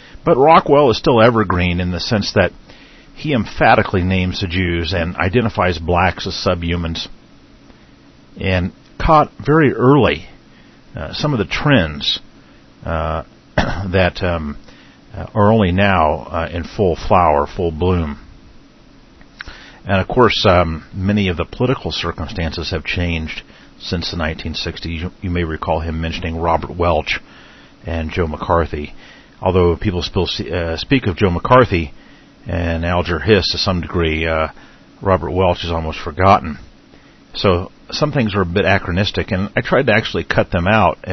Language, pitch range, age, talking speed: English, 80-95 Hz, 50-69, 145 wpm